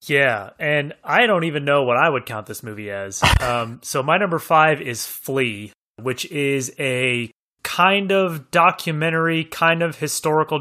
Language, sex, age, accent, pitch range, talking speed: English, male, 30-49, American, 125-155 Hz, 165 wpm